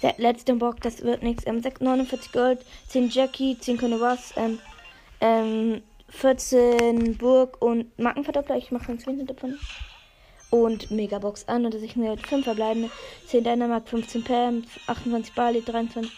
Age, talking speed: 20-39, 155 wpm